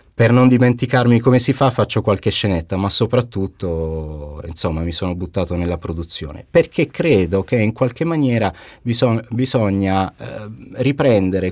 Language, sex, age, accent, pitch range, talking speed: Italian, male, 30-49, native, 90-120 Hz, 140 wpm